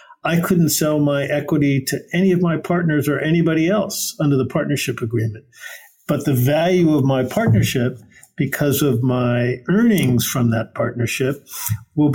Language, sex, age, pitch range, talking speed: English, male, 50-69, 125-150 Hz, 155 wpm